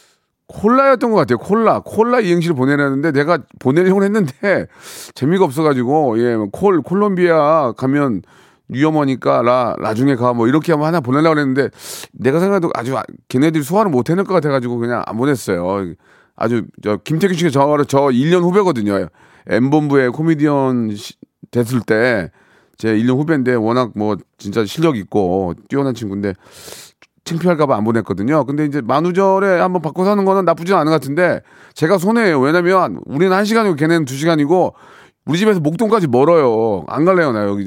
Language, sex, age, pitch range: Korean, male, 40-59, 125-180 Hz